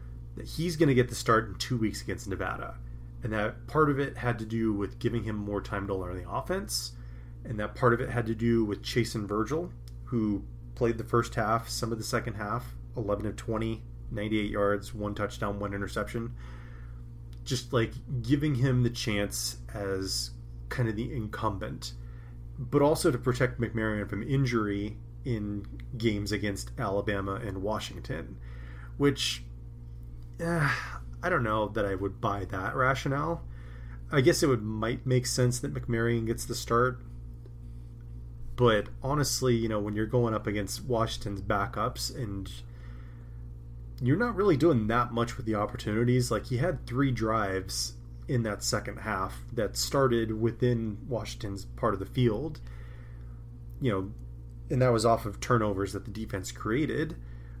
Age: 30-49